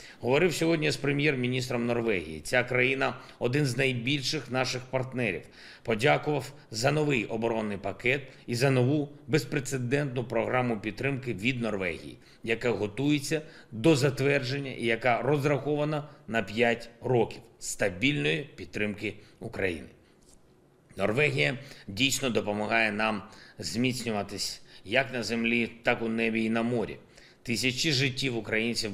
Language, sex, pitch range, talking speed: Ukrainian, male, 115-140 Hz, 115 wpm